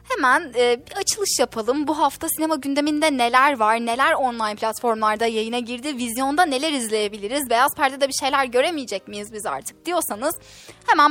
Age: 10-29